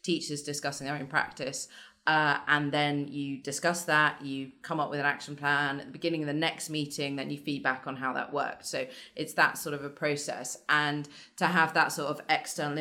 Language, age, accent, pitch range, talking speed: English, 20-39, British, 140-160 Hz, 215 wpm